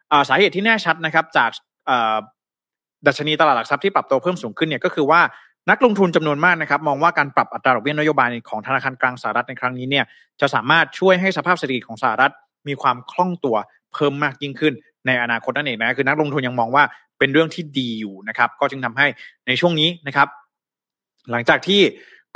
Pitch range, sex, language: 130-170 Hz, male, Thai